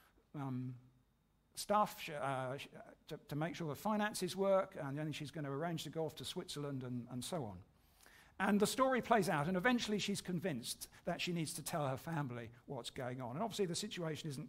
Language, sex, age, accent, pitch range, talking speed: English, male, 50-69, British, 140-195 Hz, 205 wpm